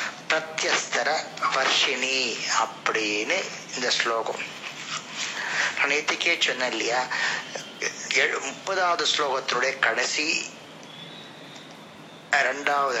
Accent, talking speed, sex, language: native, 45 wpm, male, Tamil